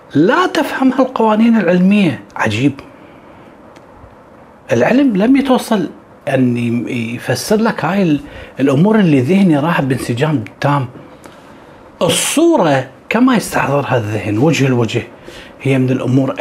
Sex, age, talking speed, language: male, 40-59, 100 wpm, Arabic